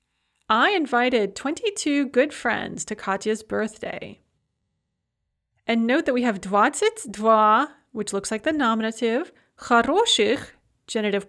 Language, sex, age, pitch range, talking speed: English, female, 30-49, 210-270 Hz, 110 wpm